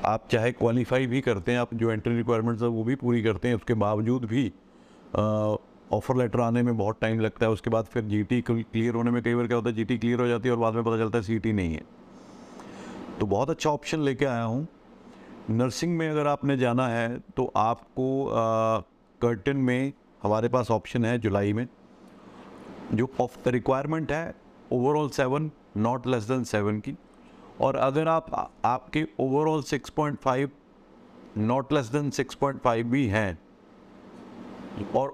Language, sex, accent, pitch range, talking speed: Hindi, male, native, 115-140 Hz, 180 wpm